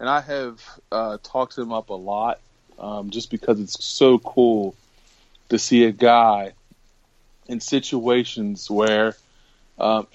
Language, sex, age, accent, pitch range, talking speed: English, male, 20-39, American, 110-130 Hz, 135 wpm